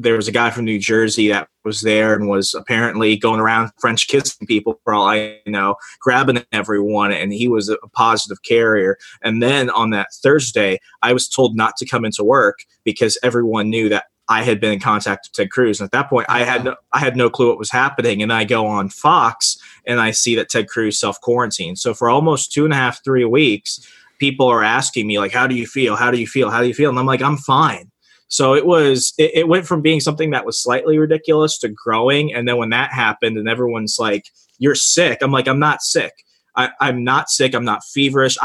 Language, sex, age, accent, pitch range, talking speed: English, male, 20-39, American, 110-130 Hz, 235 wpm